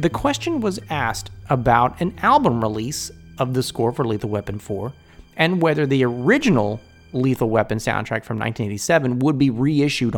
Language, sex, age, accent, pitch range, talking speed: English, male, 30-49, American, 110-155 Hz, 160 wpm